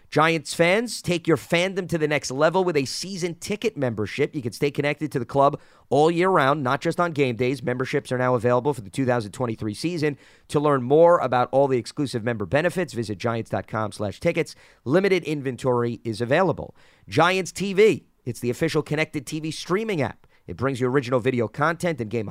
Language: English